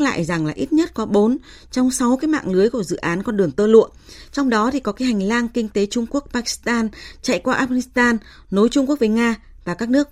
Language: Vietnamese